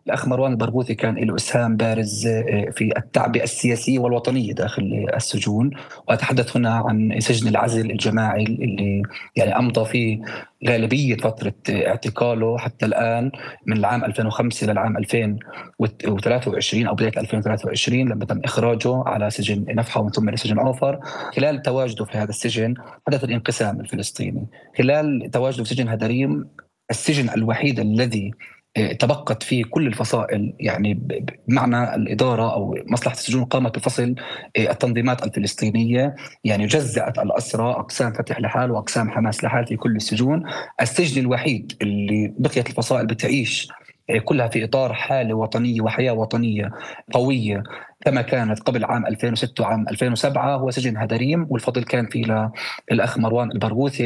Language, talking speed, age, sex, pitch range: Arabic, 130 wpm, 30-49, male, 110-125 Hz